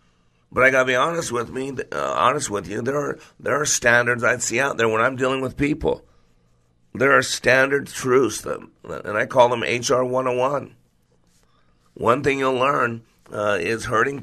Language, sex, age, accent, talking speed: English, male, 50-69, American, 175 wpm